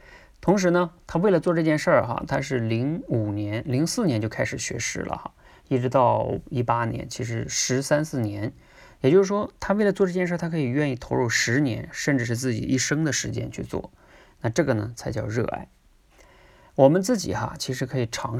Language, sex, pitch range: Chinese, male, 110-145 Hz